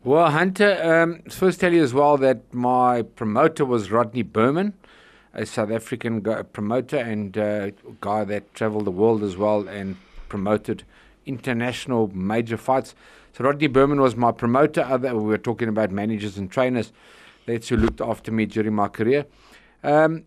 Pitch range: 110-135 Hz